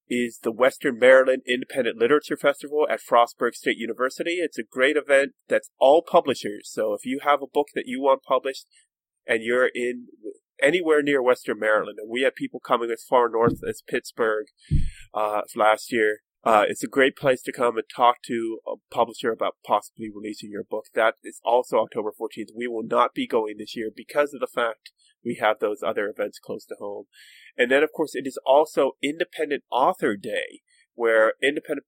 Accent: American